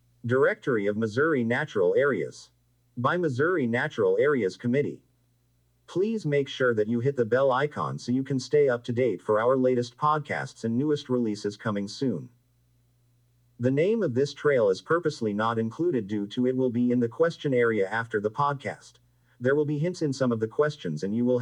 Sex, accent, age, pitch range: male, American, 50-69, 120-145 Hz